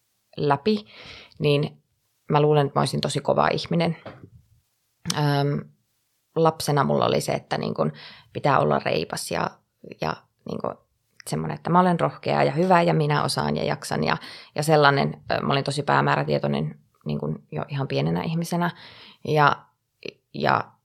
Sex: female